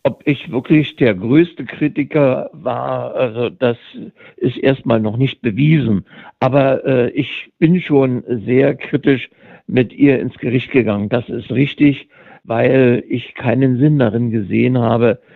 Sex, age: male, 60-79